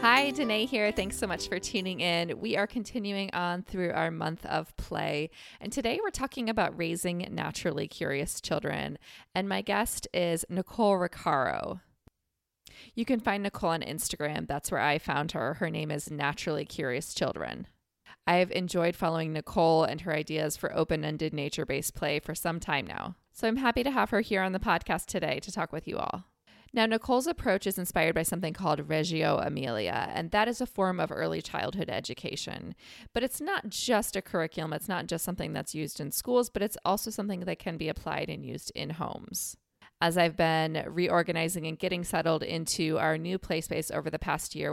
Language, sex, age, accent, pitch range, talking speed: English, female, 20-39, American, 160-210 Hz, 190 wpm